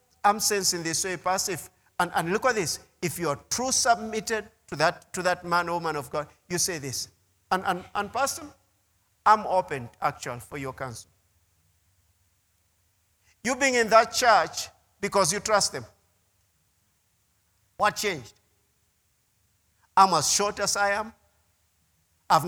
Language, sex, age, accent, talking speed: English, male, 50-69, South African, 145 wpm